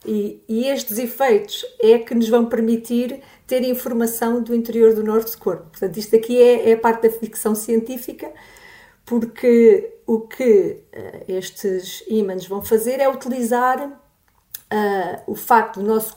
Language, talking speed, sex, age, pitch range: Portuguese, 140 wpm, female, 40-59, 215-255 Hz